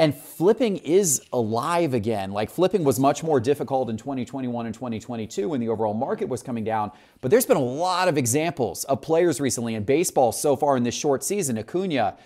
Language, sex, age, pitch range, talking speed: English, male, 30-49, 120-170 Hz, 200 wpm